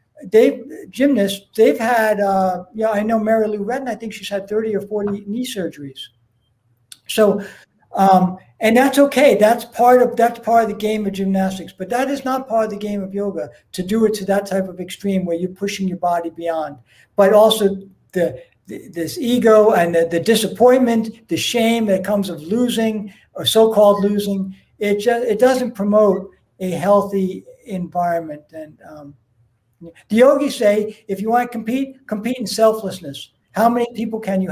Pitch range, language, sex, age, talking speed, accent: 185-225 Hz, English, male, 60-79, 180 wpm, American